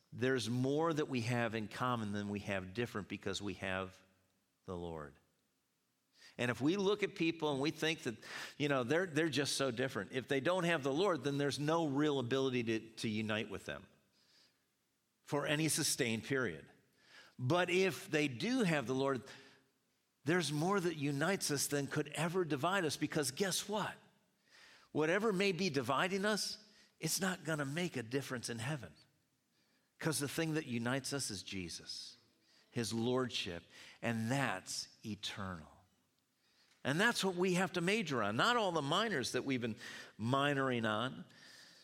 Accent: American